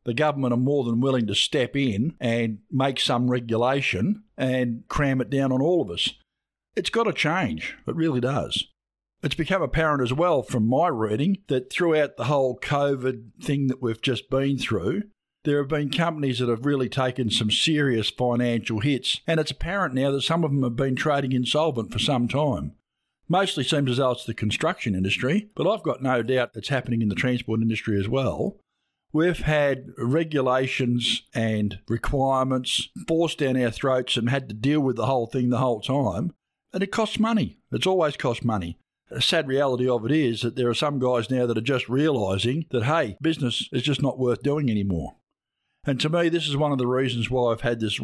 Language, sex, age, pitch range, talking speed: English, male, 50-69, 120-145 Hz, 200 wpm